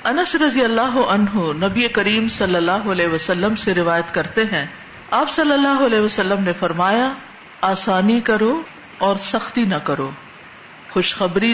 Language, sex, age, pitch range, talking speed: Urdu, female, 50-69, 180-235 Hz, 145 wpm